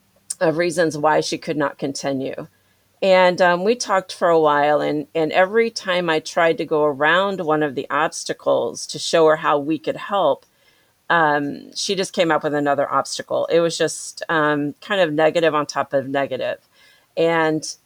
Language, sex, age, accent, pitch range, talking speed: English, female, 40-59, American, 145-175 Hz, 180 wpm